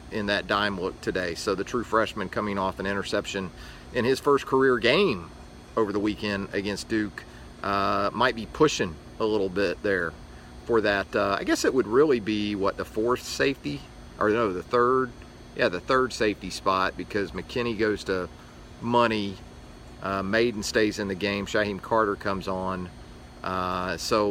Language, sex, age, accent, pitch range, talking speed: English, male, 40-59, American, 95-115 Hz, 175 wpm